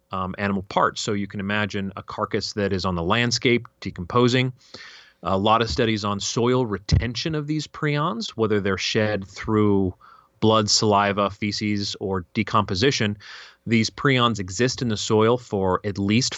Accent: American